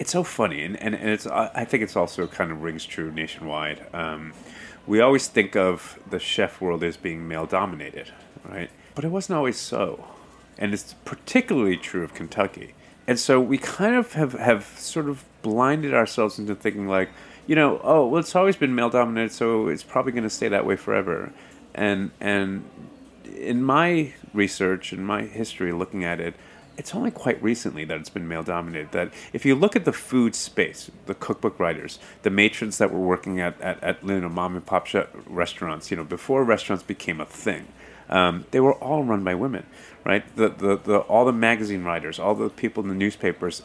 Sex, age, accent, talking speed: male, 30-49, American, 195 wpm